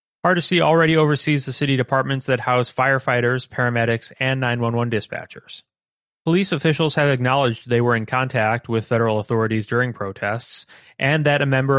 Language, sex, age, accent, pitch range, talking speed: English, male, 30-49, American, 115-140 Hz, 155 wpm